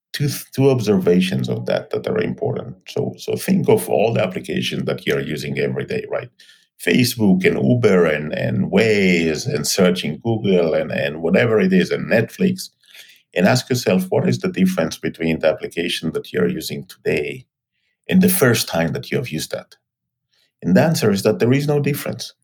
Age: 50-69